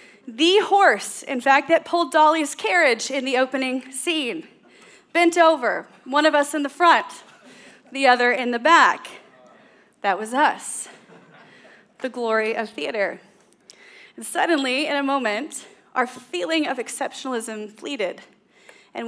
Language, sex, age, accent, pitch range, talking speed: English, female, 30-49, American, 230-280 Hz, 135 wpm